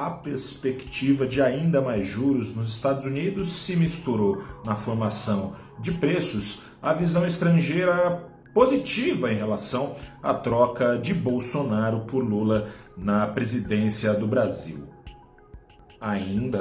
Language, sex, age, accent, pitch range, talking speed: Portuguese, male, 40-59, Brazilian, 105-140 Hz, 115 wpm